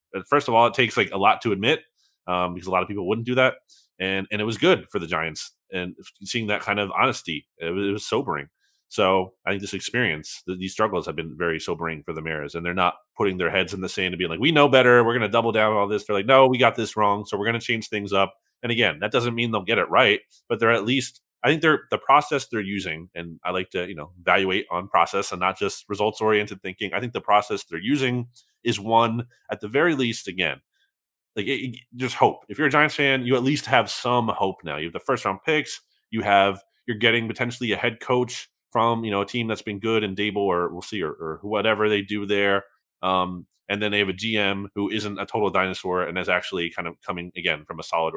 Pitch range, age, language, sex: 95-120 Hz, 30-49, English, male